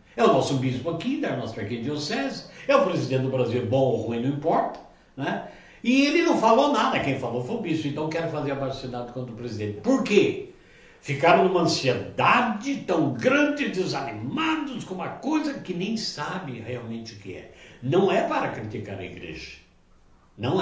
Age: 60-79